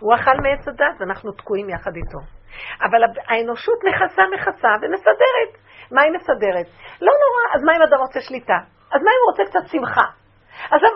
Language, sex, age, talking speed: Hebrew, female, 50-69, 175 wpm